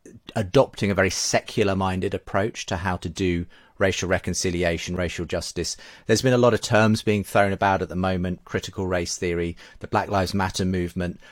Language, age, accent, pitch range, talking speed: English, 40-59, British, 85-110 Hz, 180 wpm